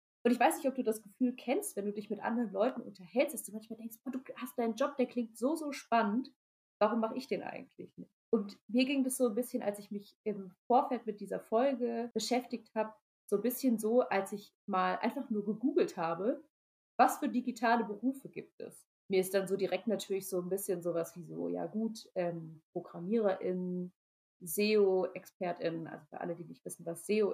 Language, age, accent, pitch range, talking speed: German, 30-49, German, 185-245 Hz, 205 wpm